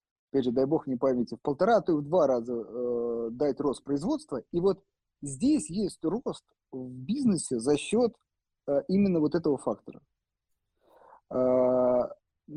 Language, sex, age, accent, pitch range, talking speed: Russian, male, 30-49, native, 125-165 Hz, 155 wpm